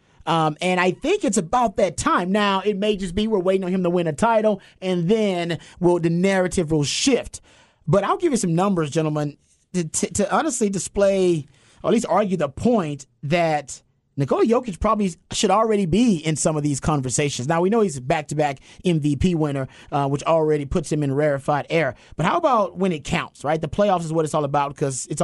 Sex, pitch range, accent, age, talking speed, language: male, 145-200 Hz, American, 30-49, 210 wpm, English